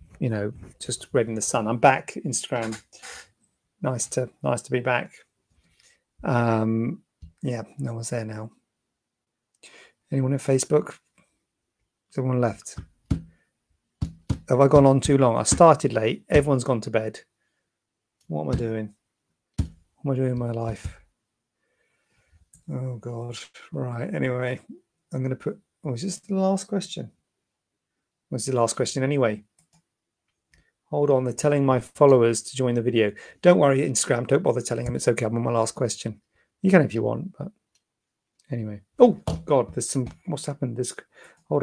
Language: English